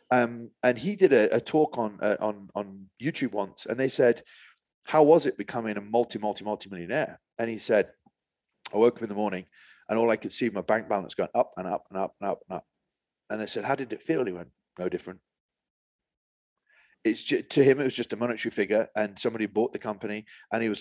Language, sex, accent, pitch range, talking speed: English, male, British, 105-135 Hz, 230 wpm